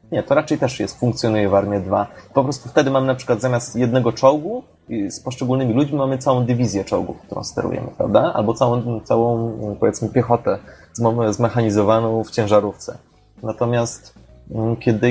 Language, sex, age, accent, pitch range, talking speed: Polish, male, 20-39, native, 110-130 Hz, 160 wpm